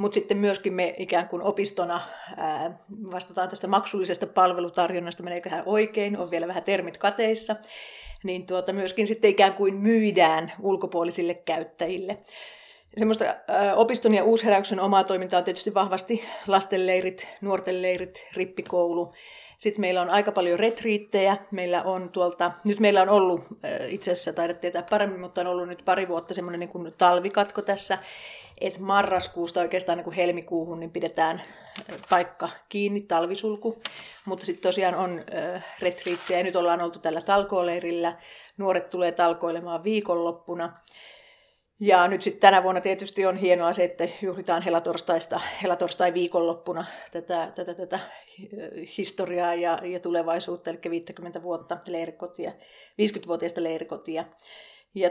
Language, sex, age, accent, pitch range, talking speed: Finnish, female, 40-59, native, 175-195 Hz, 130 wpm